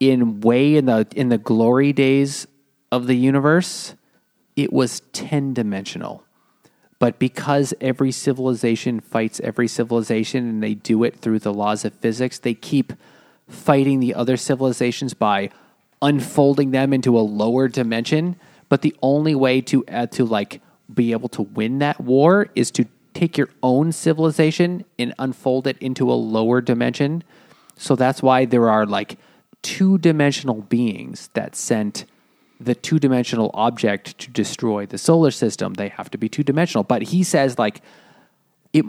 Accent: American